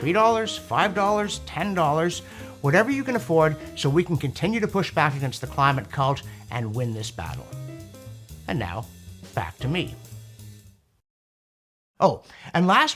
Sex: male